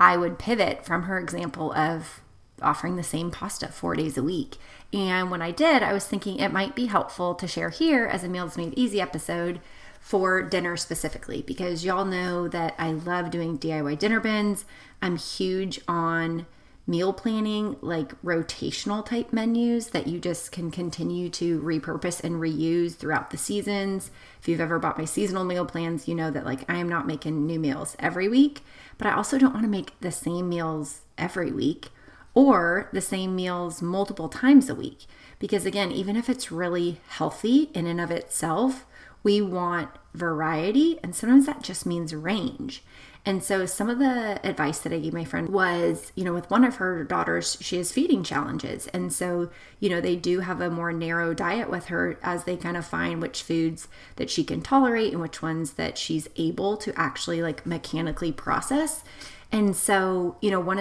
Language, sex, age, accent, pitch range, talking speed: English, female, 30-49, American, 165-205 Hz, 190 wpm